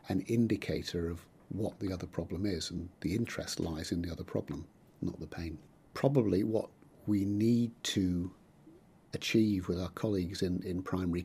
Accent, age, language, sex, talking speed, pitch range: British, 50-69, English, male, 165 wpm, 90-115 Hz